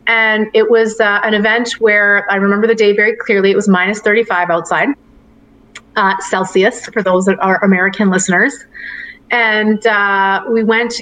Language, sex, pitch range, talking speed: English, female, 185-220 Hz, 165 wpm